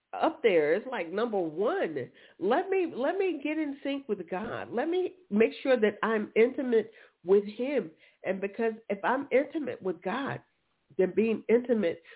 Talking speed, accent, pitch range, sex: 170 wpm, American, 160-215 Hz, female